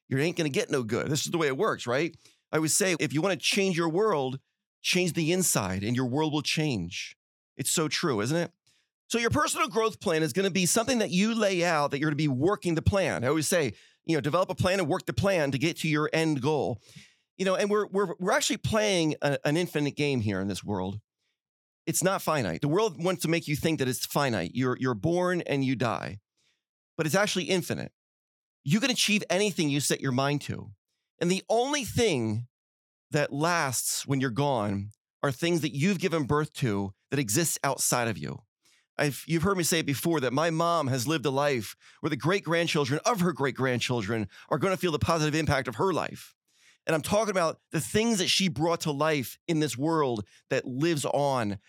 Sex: male